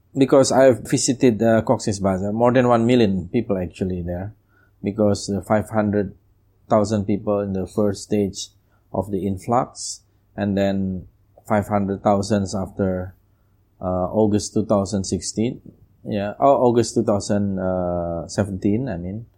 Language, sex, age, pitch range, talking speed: English, male, 20-39, 95-110 Hz, 110 wpm